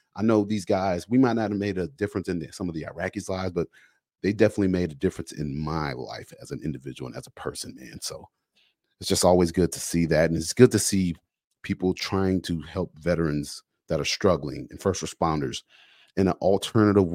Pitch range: 80-100 Hz